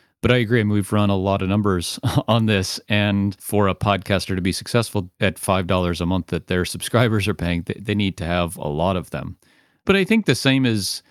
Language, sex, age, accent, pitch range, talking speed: English, male, 40-59, American, 95-120 Hz, 225 wpm